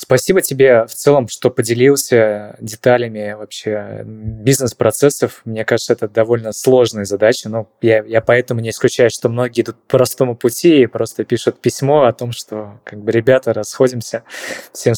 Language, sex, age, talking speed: Russian, male, 20-39, 155 wpm